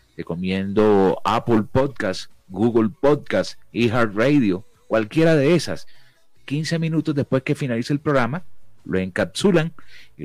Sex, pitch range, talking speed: male, 95-135 Hz, 115 wpm